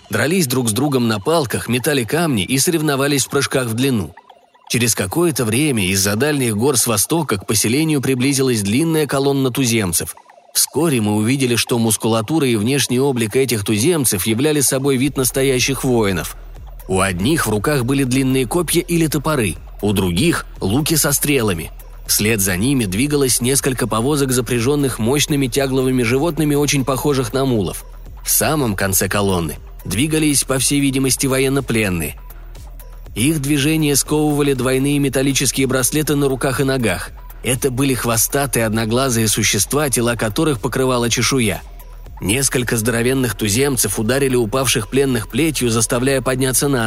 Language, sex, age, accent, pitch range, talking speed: Russian, male, 20-39, native, 115-140 Hz, 140 wpm